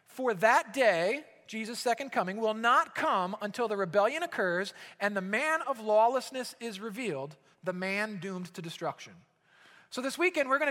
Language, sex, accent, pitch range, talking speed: English, male, American, 170-220 Hz, 170 wpm